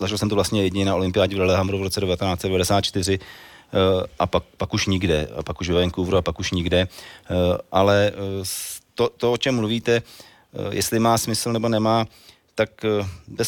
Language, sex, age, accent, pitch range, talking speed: Czech, male, 40-59, native, 90-100 Hz, 175 wpm